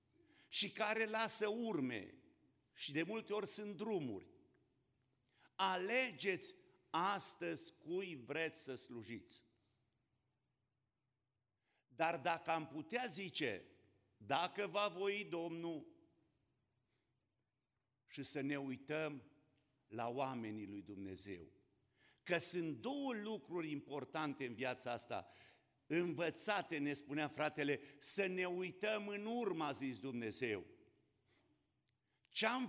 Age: 50-69